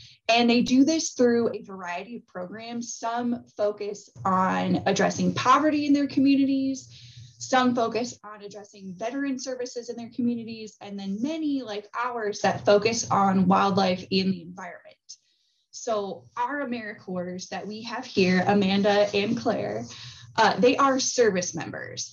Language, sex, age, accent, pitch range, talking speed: English, female, 10-29, American, 195-255 Hz, 145 wpm